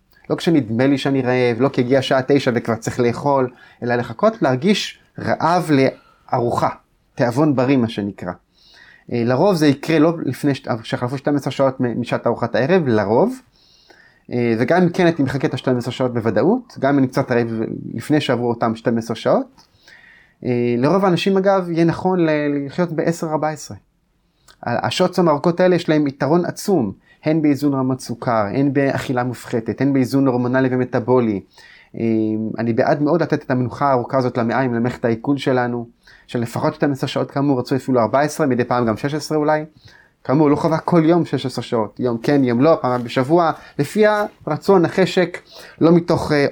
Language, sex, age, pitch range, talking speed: Hebrew, male, 30-49, 125-155 Hz, 155 wpm